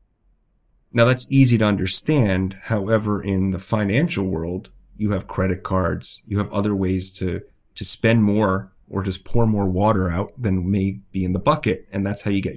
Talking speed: 185 wpm